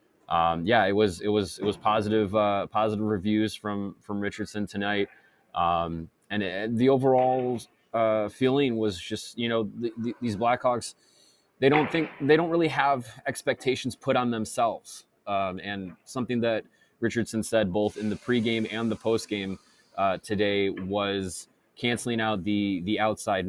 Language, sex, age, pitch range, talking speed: English, male, 20-39, 95-110 Hz, 155 wpm